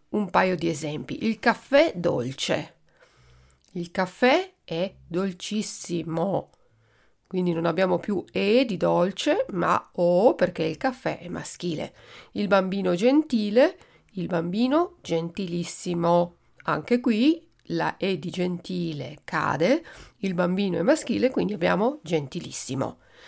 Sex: female